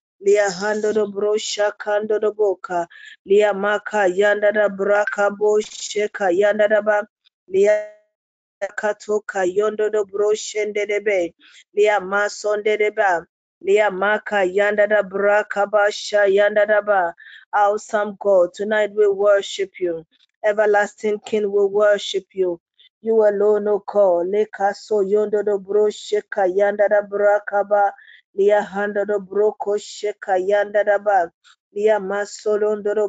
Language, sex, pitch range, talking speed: English, female, 200-210 Hz, 100 wpm